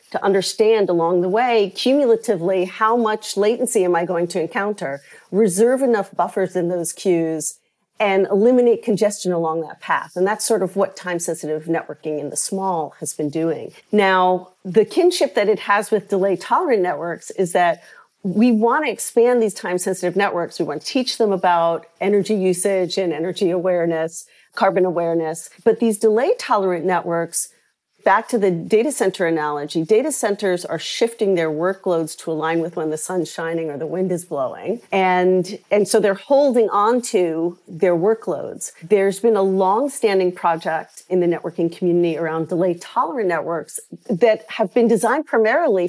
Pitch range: 175-220 Hz